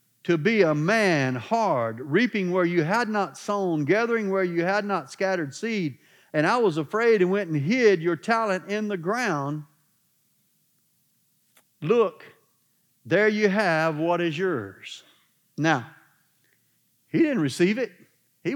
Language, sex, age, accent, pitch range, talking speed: English, male, 50-69, American, 155-205 Hz, 140 wpm